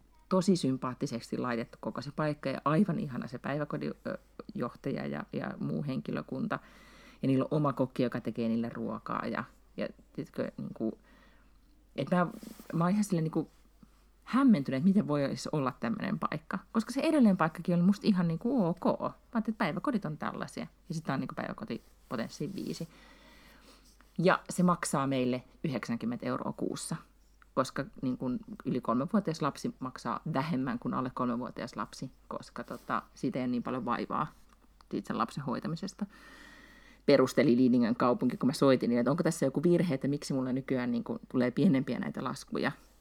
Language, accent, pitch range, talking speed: Finnish, native, 135-220 Hz, 160 wpm